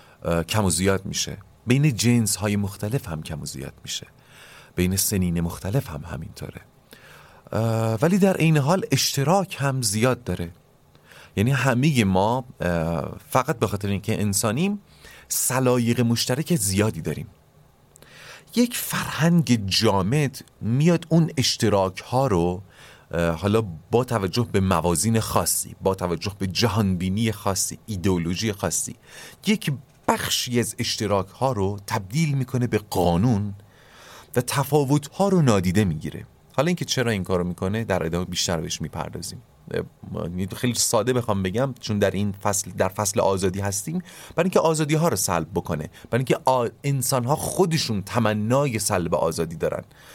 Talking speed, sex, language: 135 wpm, male, Persian